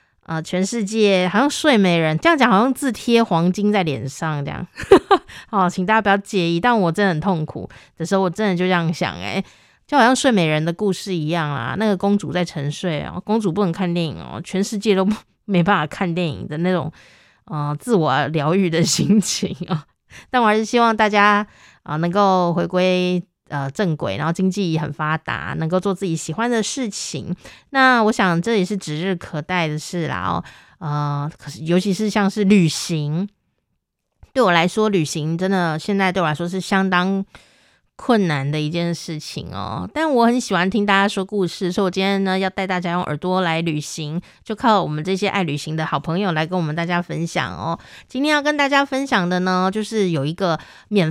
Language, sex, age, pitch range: Chinese, female, 20-39, 165-210 Hz